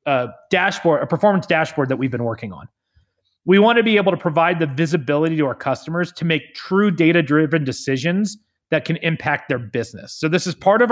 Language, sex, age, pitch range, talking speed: English, male, 30-49, 140-175 Hz, 205 wpm